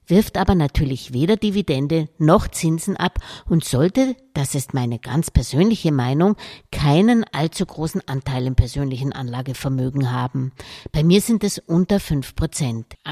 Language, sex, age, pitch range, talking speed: English, female, 60-79, 135-195 Hz, 135 wpm